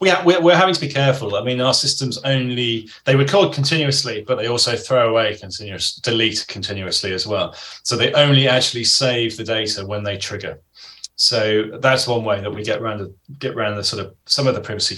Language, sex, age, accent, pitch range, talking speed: English, male, 20-39, British, 105-125 Hz, 205 wpm